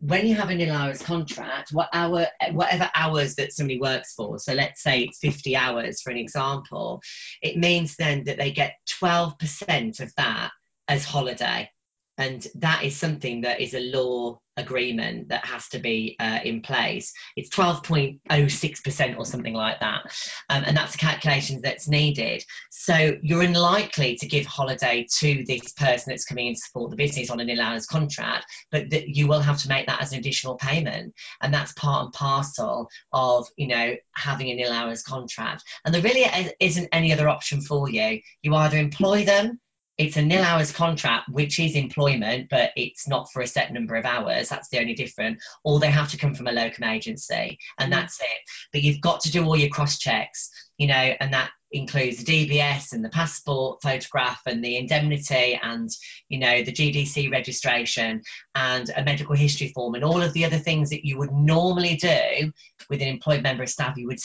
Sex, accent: female, British